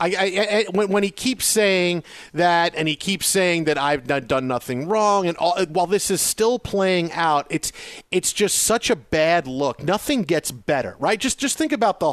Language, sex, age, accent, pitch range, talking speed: English, male, 40-59, American, 170-215 Hz, 205 wpm